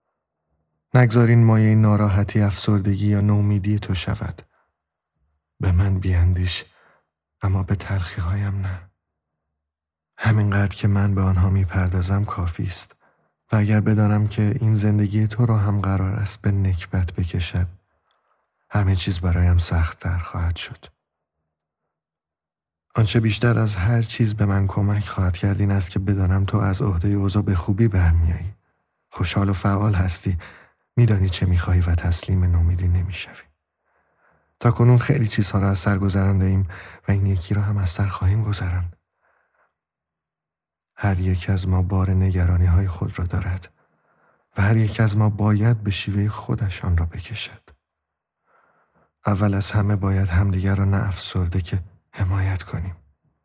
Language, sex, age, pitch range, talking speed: Persian, male, 30-49, 90-105 Hz, 140 wpm